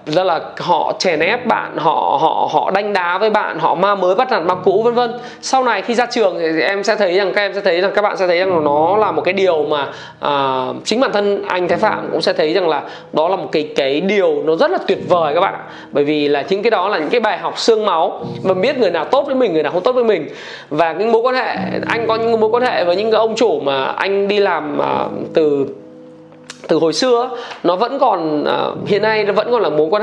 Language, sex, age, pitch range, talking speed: Vietnamese, male, 20-39, 170-230 Hz, 270 wpm